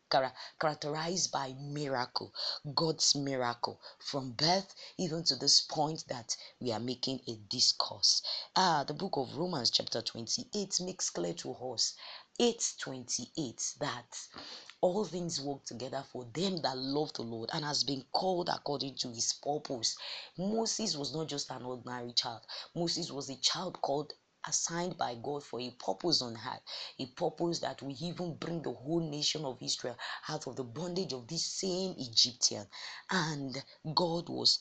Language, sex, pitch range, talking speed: English, female, 130-175 Hz, 160 wpm